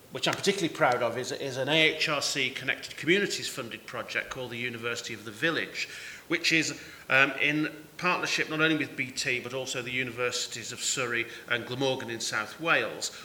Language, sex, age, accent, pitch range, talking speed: English, male, 40-59, British, 125-160 Hz, 170 wpm